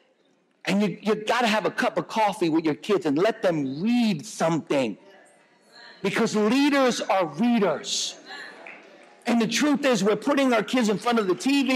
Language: English